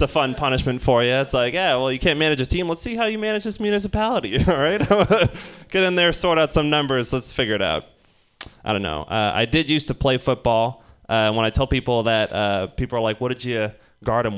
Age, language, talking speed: 20-39, English, 245 wpm